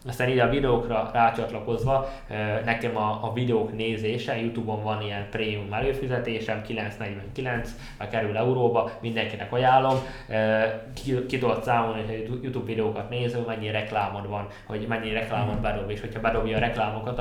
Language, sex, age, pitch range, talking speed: Hungarian, male, 20-39, 110-120 Hz, 140 wpm